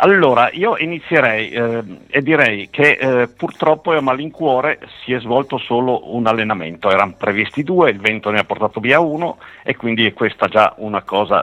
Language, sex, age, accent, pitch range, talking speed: Italian, male, 50-69, native, 110-155 Hz, 185 wpm